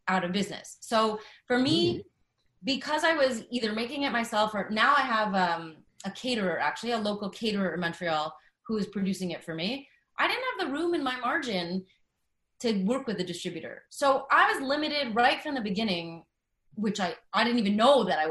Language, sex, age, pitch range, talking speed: English, female, 30-49, 185-245 Hz, 200 wpm